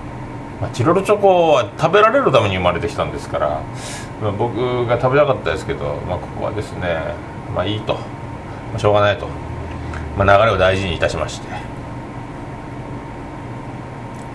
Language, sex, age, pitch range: Japanese, male, 40-59, 110-135 Hz